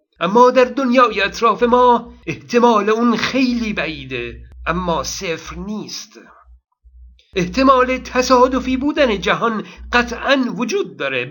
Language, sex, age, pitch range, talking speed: Persian, male, 50-69, 190-235 Hz, 100 wpm